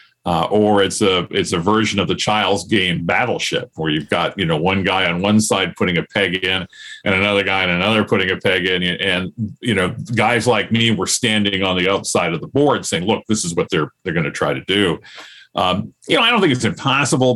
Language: English